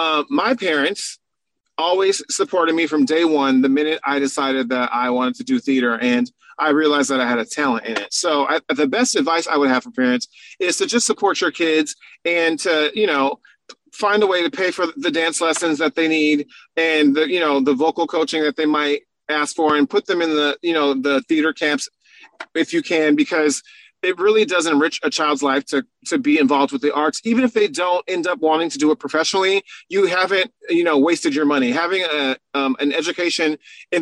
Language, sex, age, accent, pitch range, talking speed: English, male, 30-49, American, 145-195 Hz, 220 wpm